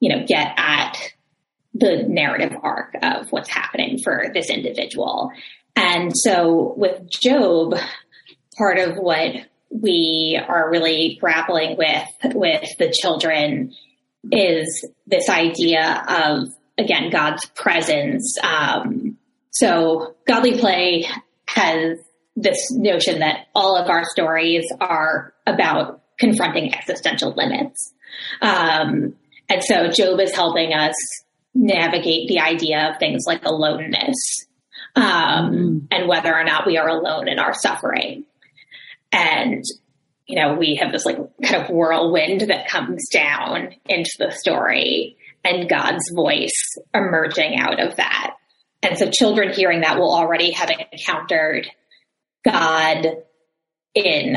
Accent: American